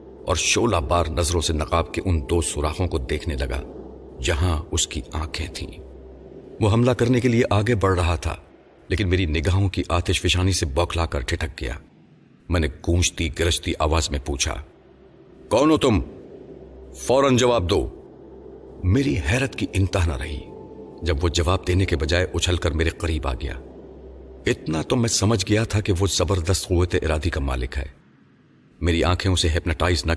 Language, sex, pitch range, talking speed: Urdu, male, 80-100 Hz, 175 wpm